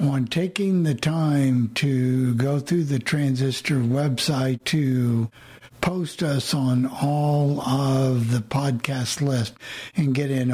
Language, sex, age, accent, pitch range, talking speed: English, male, 60-79, American, 120-150 Hz, 125 wpm